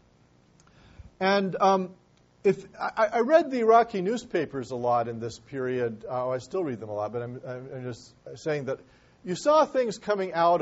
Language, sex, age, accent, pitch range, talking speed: English, male, 40-59, American, 120-165 Hz, 180 wpm